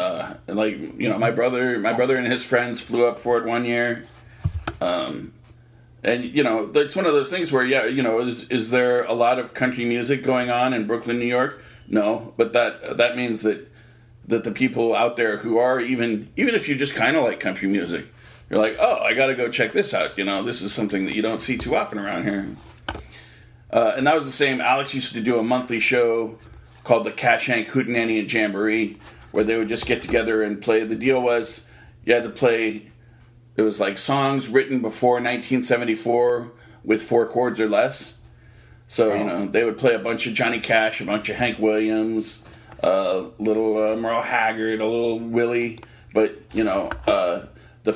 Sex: male